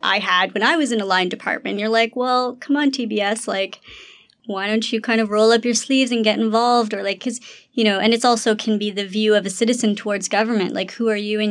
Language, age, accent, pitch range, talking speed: English, 20-39, American, 195-235 Hz, 260 wpm